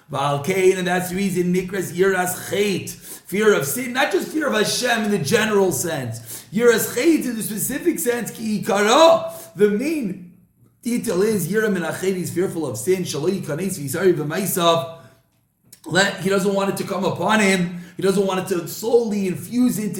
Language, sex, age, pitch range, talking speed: English, male, 30-49, 175-225 Hz, 150 wpm